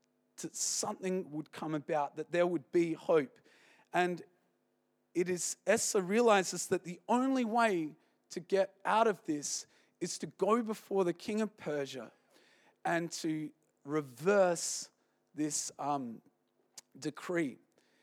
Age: 40-59